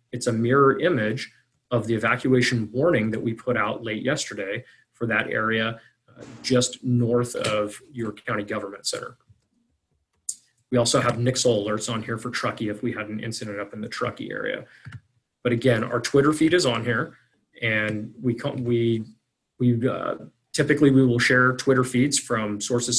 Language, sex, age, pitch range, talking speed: English, male, 30-49, 115-130 Hz, 170 wpm